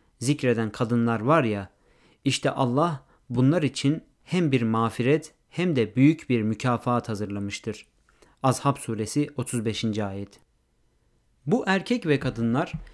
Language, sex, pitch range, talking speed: Turkish, male, 120-160 Hz, 115 wpm